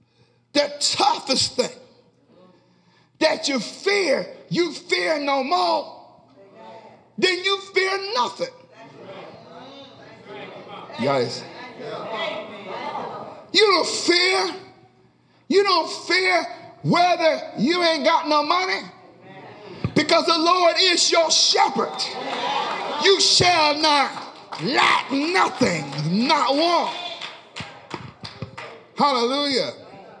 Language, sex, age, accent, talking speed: English, male, 50-69, American, 80 wpm